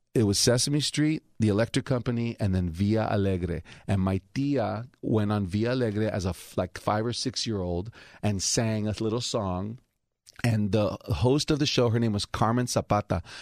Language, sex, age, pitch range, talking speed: English, male, 30-49, 105-130 Hz, 190 wpm